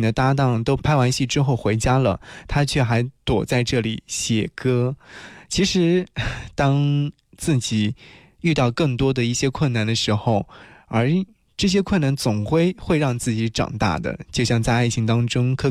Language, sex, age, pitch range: Chinese, male, 20-39, 115-145 Hz